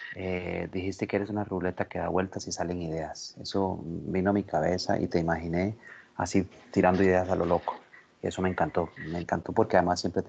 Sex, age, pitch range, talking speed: male, 30-49, 90-115 Hz, 210 wpm